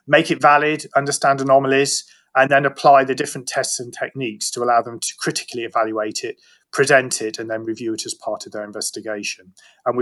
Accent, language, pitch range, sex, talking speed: British, English, 115-150 Hz, male, 200 wpm